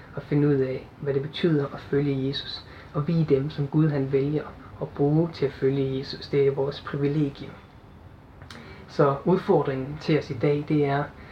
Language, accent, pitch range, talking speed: Danish, native, 135-155 Hz, 190 wpm